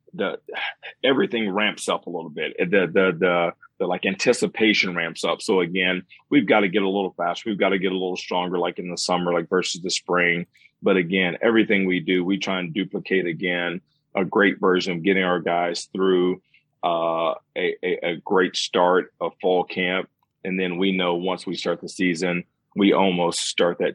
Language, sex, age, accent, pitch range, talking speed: English, male, 40-59, American, 85-95 Hz, 200 wpm